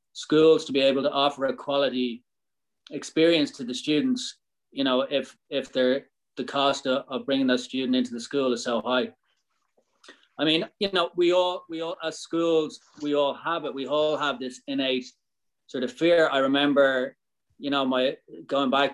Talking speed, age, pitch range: 185 wpm, 30-49, 130-160 Hz